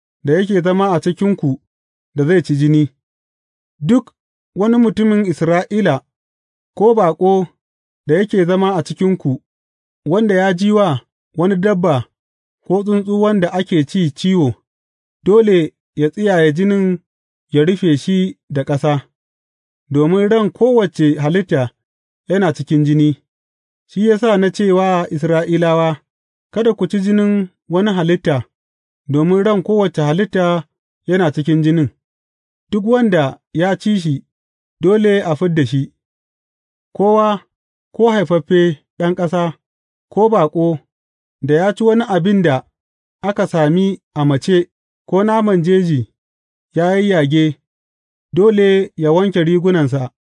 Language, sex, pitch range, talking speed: English, male, 145-195 Hz, 105 wpm